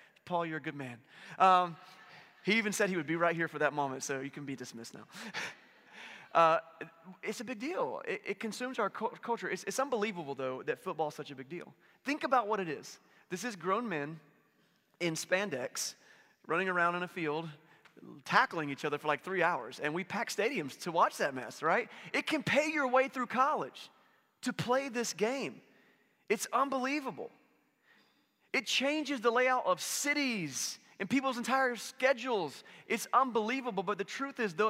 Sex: male